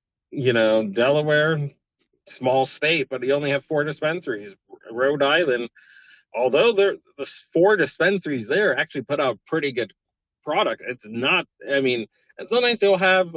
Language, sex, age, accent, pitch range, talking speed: English, male, 30-49, American, 110-155 Hz, 145 wpm